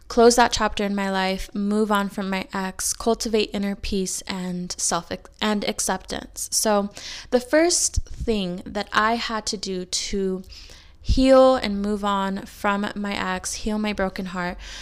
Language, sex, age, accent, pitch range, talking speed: English, female, 20-39, American, 195-230 Hz, 160 wpm